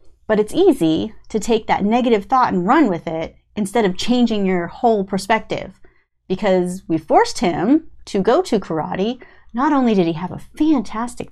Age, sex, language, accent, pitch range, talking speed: 30-49, female, English, American, 190-305 Hz, 175 wpm